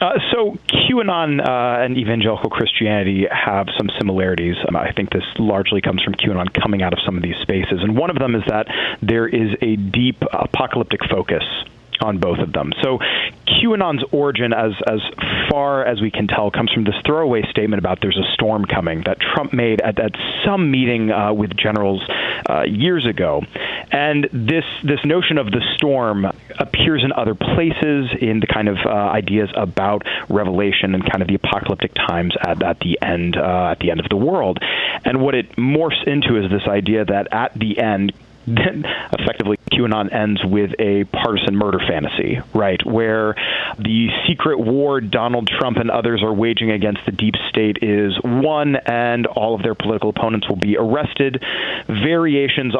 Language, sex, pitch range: English, male, 100-125 Hz